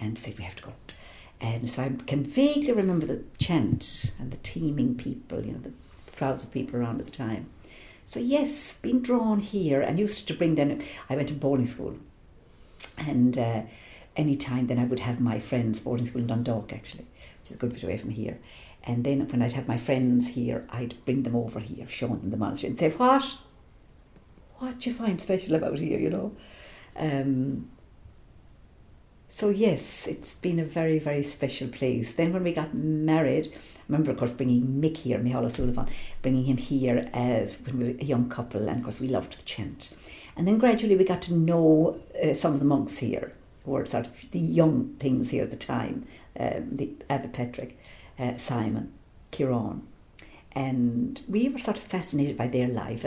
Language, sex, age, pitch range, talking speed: English, female, 50-69, 120-165 Hz, 200 wpm